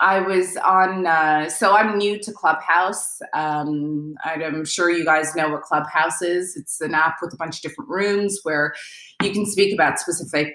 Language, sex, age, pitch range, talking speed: English, female, 20-39, 160-205 Hz, 190 wpm